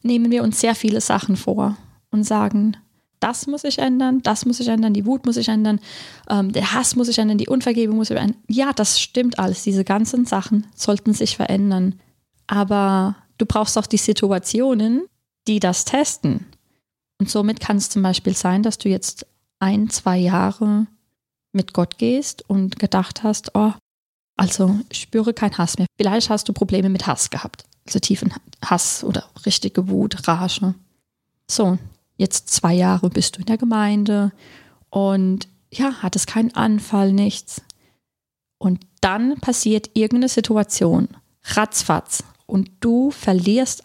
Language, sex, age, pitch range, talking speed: German, female, 20-39, 195-235 Hz, 160 wpm